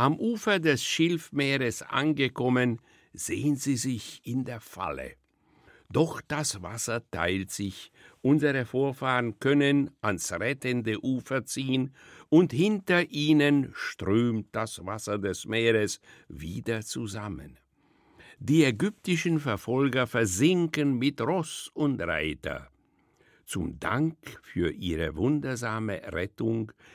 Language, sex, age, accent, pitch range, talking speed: German, male, 60-79, German, 110-145 Hz, 105 wpm